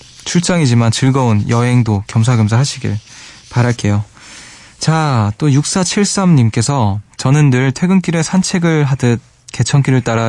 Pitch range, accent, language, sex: 110-140 Hz, native, Korean, male